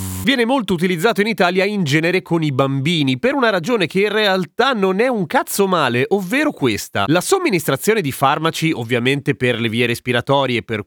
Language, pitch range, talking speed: Italian, 125-180 Hz, 180 wpm